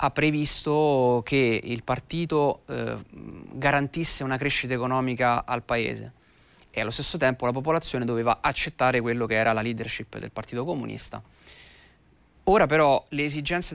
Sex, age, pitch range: male, 30-49, 120-140 Hz